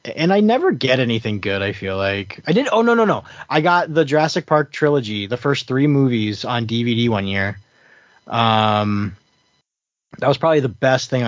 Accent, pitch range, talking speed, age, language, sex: American, 105-140 Hz, 190 wpm, 20-39, English, male